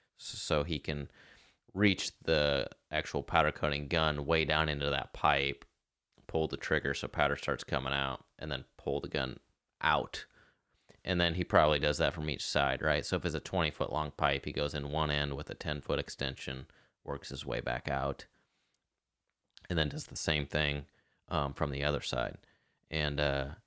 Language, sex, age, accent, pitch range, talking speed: English, male, 30-49, American, 75-90 Hz, 185 wpm